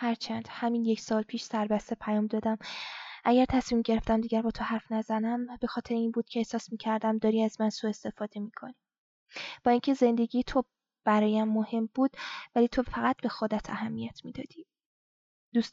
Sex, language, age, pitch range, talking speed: female, Persian, 10-29, 215-240 Hz, 170 wpm